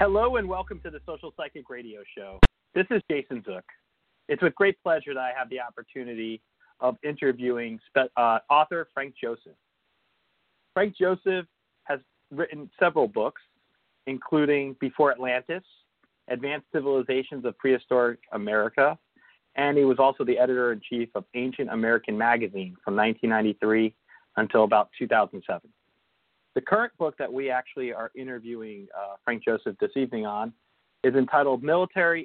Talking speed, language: 140 wpm, English